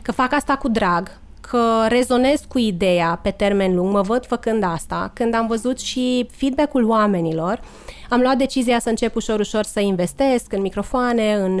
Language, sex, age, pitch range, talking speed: Romanian, female, 20-39, 200-240 Hz, 170 wpm